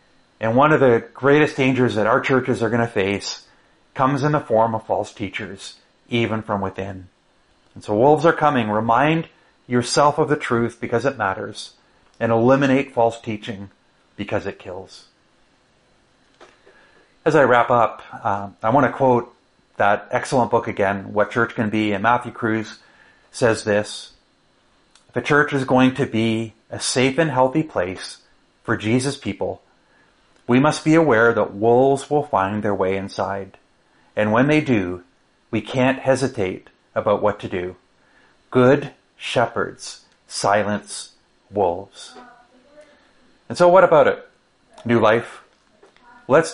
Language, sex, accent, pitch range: English, male, American, 105-140 Hz